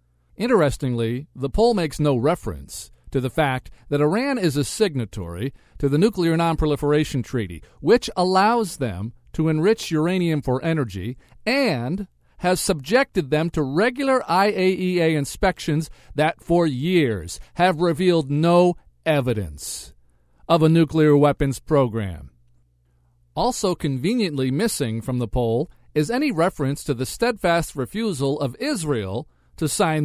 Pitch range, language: 135-195 Hz, English